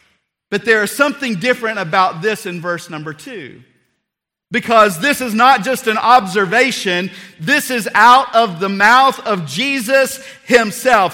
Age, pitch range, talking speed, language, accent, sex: 50-69, 205-255 Hz, 145 wpm, English, American, male